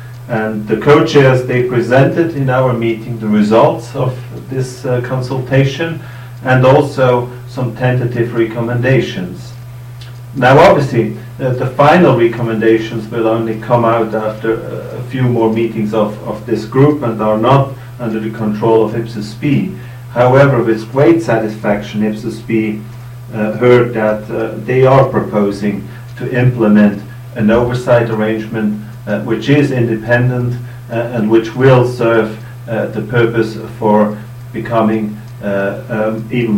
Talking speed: 135 wpm